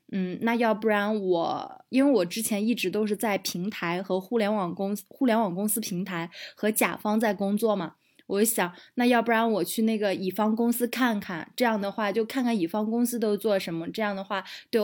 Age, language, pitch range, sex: 20-39, Chinese, 195-230 Hz, female